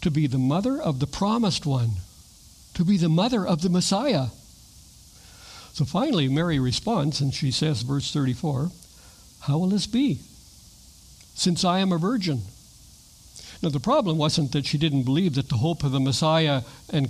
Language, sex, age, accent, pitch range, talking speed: English, male, 60-79, American, 135-185 Hz, 170 wpm